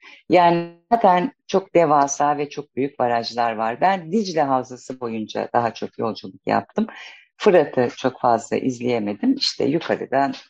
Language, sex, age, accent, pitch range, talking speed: Turkish, female, 50-69, native, 115-170 Hz, 130 wpm